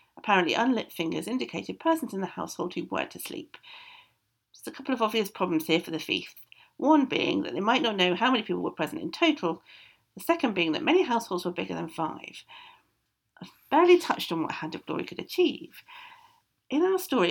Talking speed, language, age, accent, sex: 200 wpm, English, 50-69, British, female